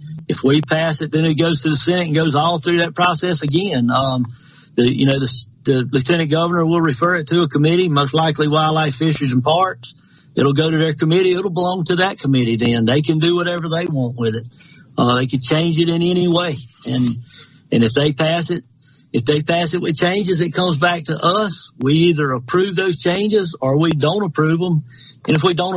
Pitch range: 140-170 Hz